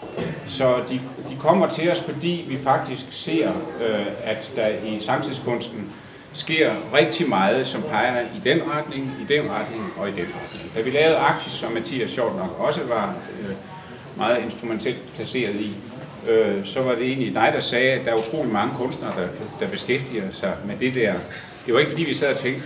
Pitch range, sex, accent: 115-150 Hz, male, native